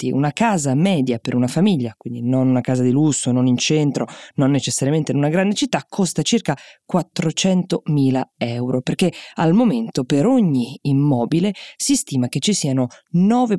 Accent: native